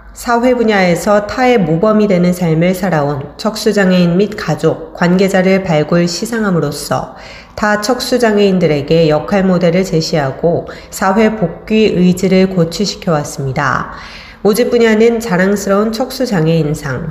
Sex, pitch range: female, 165-210 Hz